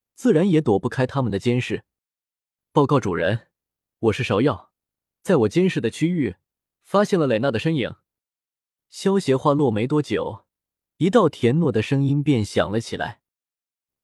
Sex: male